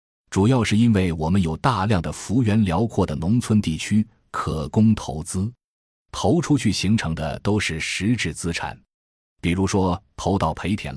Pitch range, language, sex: 80-110 Hz, Chinese, male